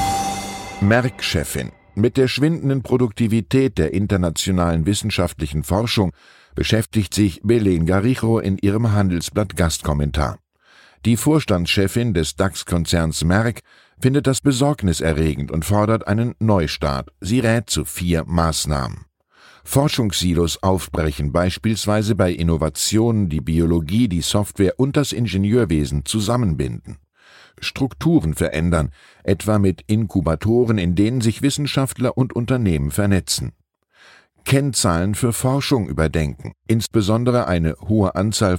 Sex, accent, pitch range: male, German, 80-115 Hz